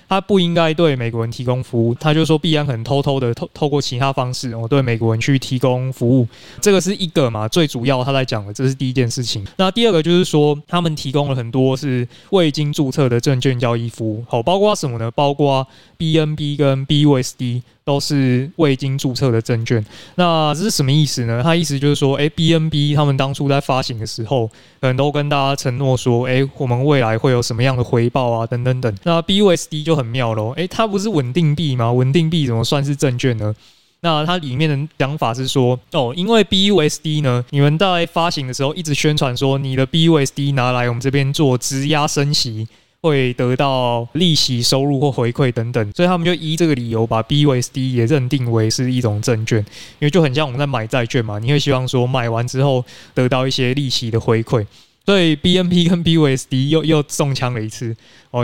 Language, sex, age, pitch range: Chinese, male, 20-39, 125-155 Hz